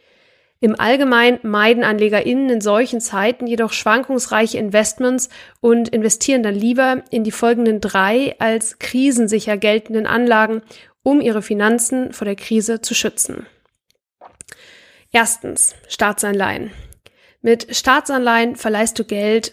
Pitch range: 220-255 Hz